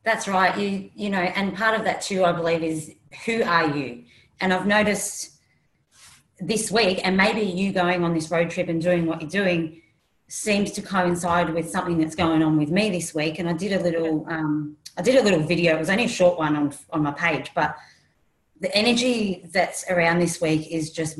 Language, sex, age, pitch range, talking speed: English, female, 30-49, 155-185 Hz, 215 wpm